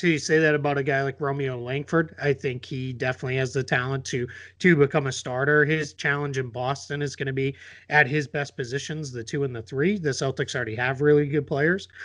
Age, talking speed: 30-49, 225 wpm